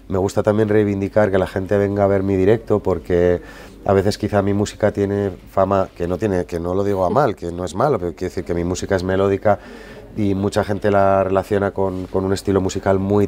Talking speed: 235 wpm